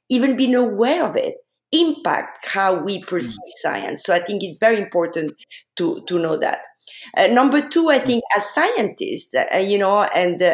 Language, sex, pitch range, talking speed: English, female, 175-255 Hz, 175 wpm